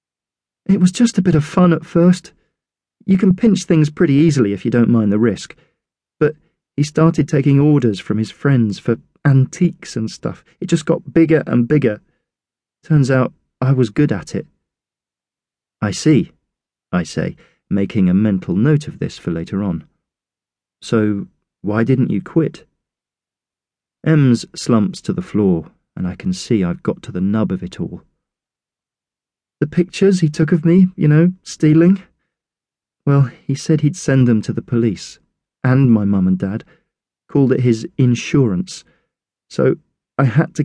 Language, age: English, 40-59